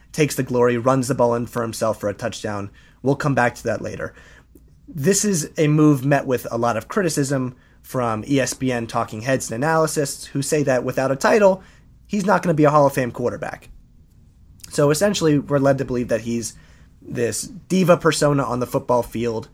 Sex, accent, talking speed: male, American, 200 wpm